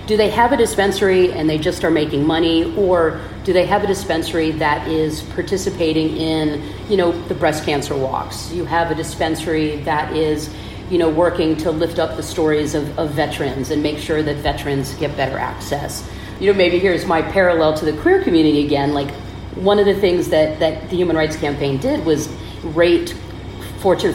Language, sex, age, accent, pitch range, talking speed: English, female, 40-59, American, 145-170 Hz, 195 wpm